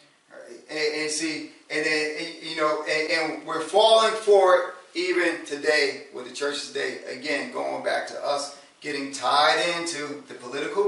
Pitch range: 145-195 Hz